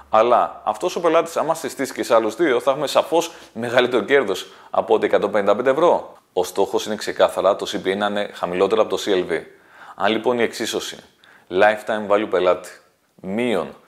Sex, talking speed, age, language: male, 160 wpm, 30-49, Greek